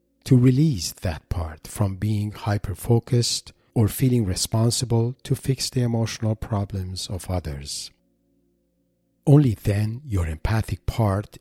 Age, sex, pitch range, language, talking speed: 50-69, male, 90-120 Hz, English, 115 wpm